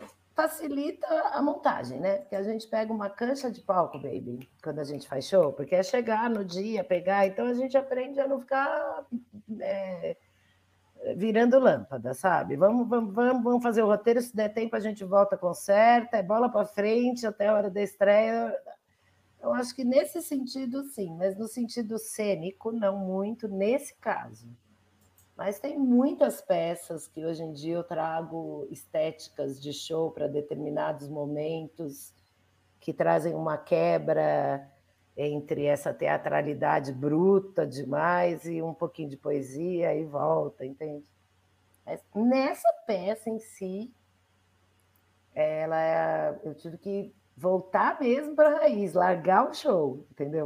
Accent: Brazilian